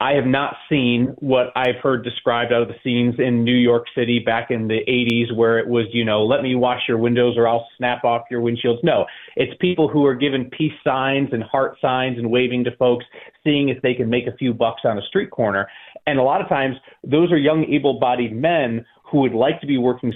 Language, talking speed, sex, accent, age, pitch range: English, 235 wpm, male, American, 30-49, 115-140 Hz